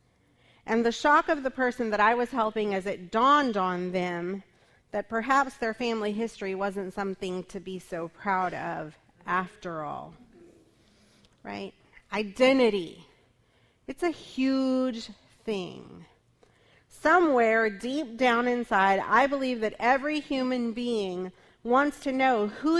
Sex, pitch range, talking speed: female, 200-265 Hz, 130 wpm